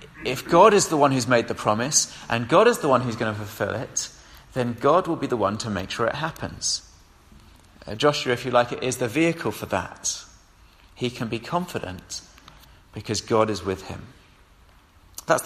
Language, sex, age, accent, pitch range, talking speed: English, male, 30-49, British, 95-130 Hz, 195 wpm